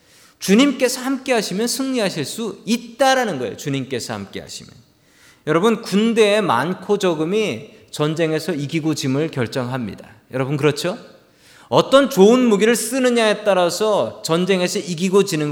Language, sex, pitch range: Korean, male, 140-225 Hz